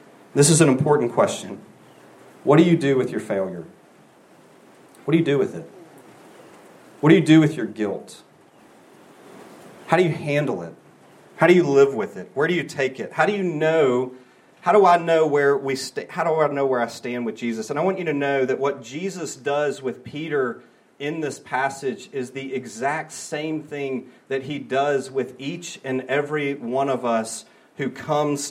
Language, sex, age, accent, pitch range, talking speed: English, male, 40-59, American, 130-165 Hz, 195 wpm